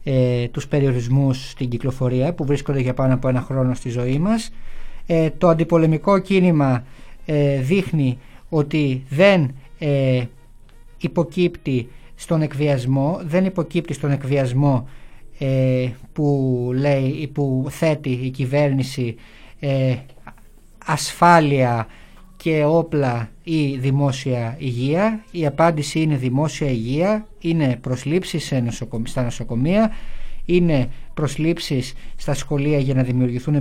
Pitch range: 130-165 Hz